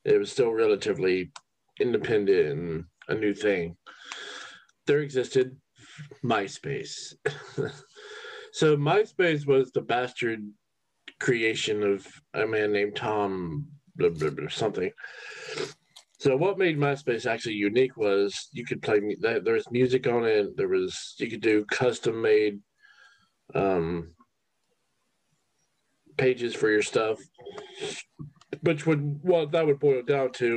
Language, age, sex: English, 40-59, male